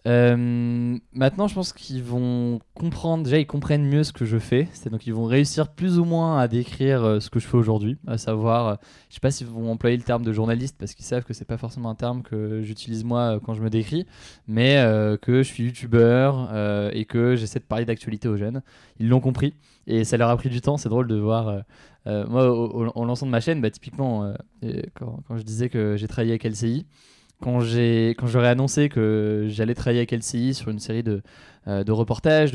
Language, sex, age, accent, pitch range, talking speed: French, male, 20-39, French, 115-140 Hz, 235 wpm